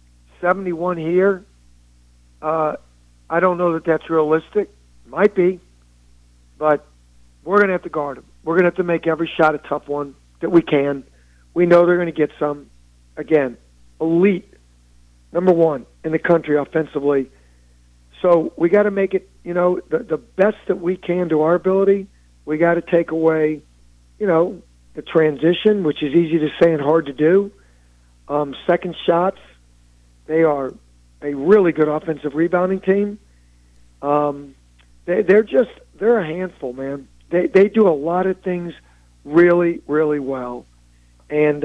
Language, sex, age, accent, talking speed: English, male, 50-69, American, 160 wpm